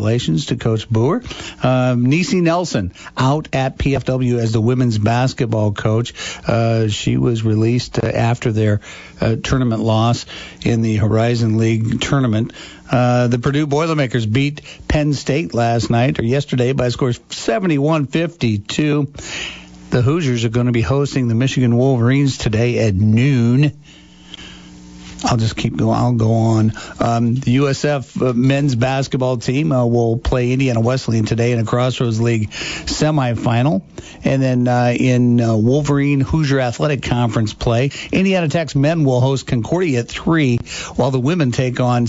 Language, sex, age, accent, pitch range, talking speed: English, male, 60-79, American, 115-135 Hz, 150 wpm